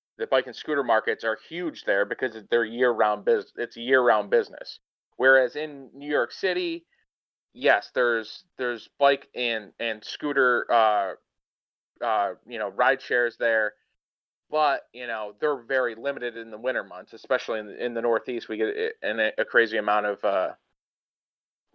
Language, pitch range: English, 110-150 Hz